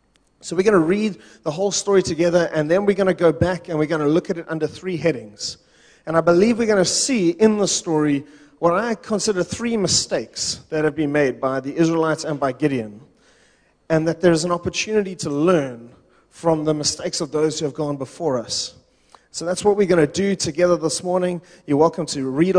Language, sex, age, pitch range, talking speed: English, male, 30-49, 140-185 Hz, 220 wpm